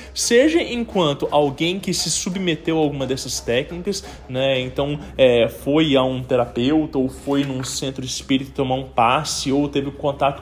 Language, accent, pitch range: English, Brazilian, 140-195 Hz